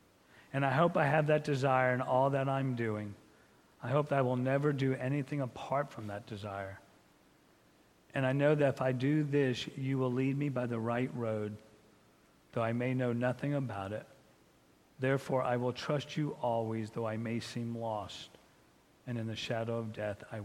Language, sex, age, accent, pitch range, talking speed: English, male, 50-69, American, 110-145 Hz, 190 wpm